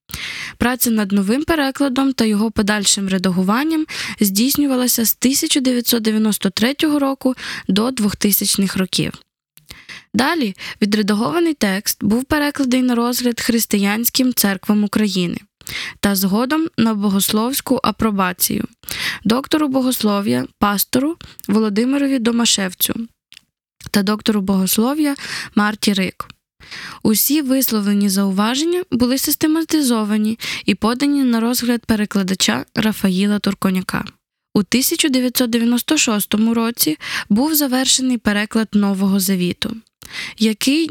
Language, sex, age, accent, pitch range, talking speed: Ukrainian, female, 20-39, native, 210-260 Hz, 90 wpm